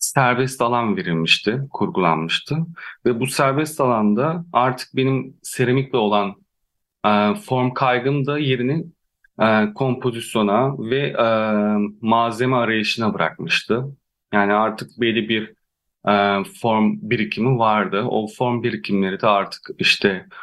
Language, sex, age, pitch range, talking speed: Turkish, male, 30-49, 105-130 Hz, 110 wpm